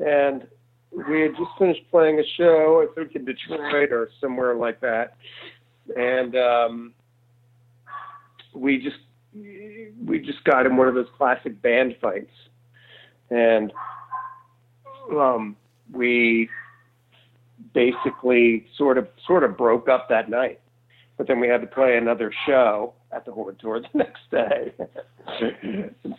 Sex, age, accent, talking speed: male, 40-59, American, 135 wpm